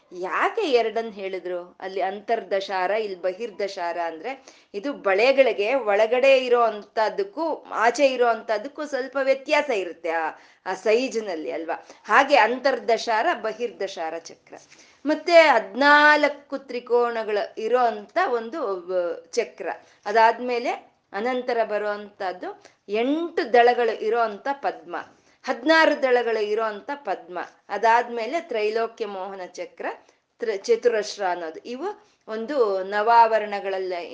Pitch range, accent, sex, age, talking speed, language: 200-275 Hz, native, female, 20-39, 95 wpm, Kannada